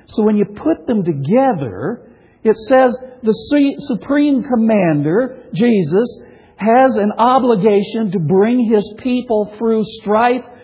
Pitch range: 205-250 Hz